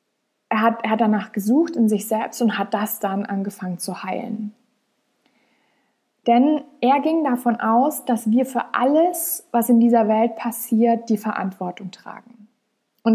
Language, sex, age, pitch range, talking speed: German, female, 20-39, 195-240 Hz, 150 wpm